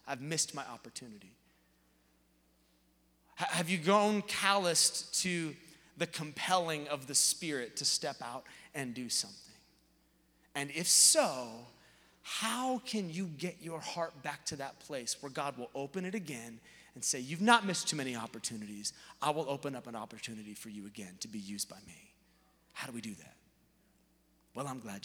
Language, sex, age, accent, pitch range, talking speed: English, male, 30-49, American, 125-195 Hz, 165 wpm